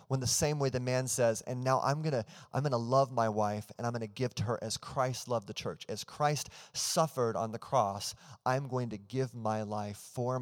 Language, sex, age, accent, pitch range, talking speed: English, male, 30-49, American, 105-130 Hz, 250 wpm